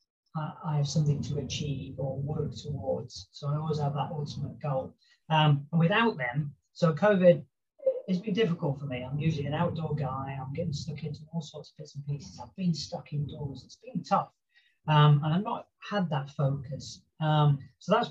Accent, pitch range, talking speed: British, 140-170 Hz, 190 wpm